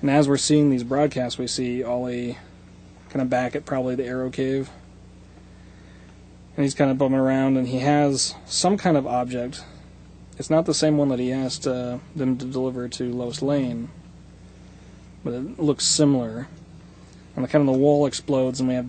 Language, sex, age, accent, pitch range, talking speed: English, male, 30-49, American, 95-150 Hz, 180 wpm